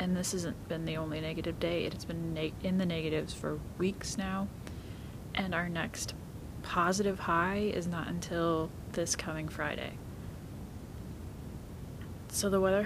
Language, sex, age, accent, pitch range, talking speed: English, female, 30-49, American, 160-205 Hz, 140 wpm